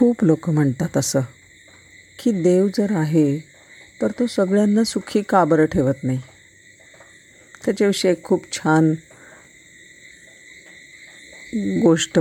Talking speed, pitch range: 70 wpm, 140-180 Hz